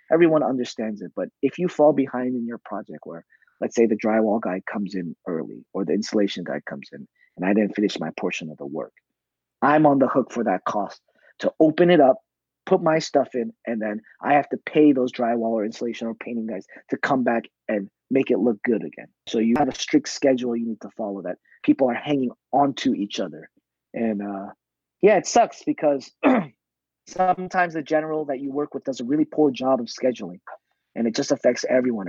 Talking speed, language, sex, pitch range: 215 wpm, English, male, 110-145 Hz